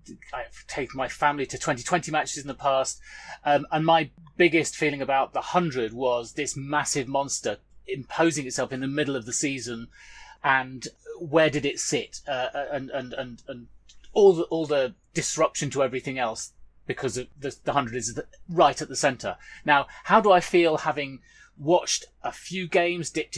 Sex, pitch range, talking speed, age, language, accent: male, 135-170 Hz, 180 wpm, 30-49, English, British